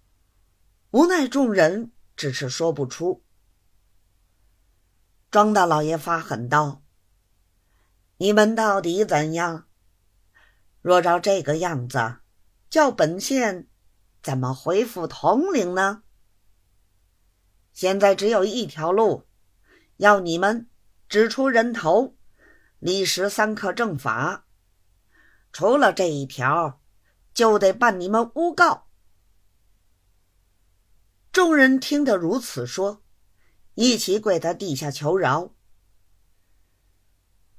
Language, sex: Chinese, female